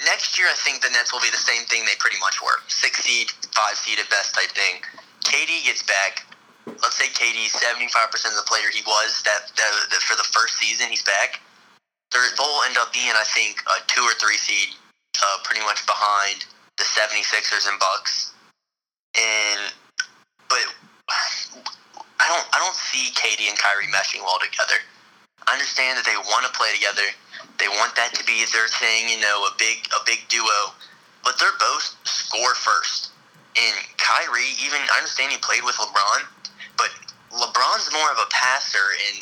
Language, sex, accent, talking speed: English, male, American, 185 wpm